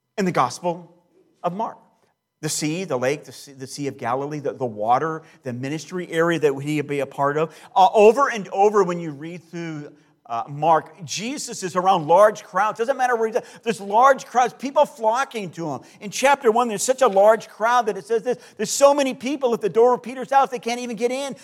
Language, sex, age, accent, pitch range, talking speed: English, male, 40-59, American, 175-230 Hz, 230 wpm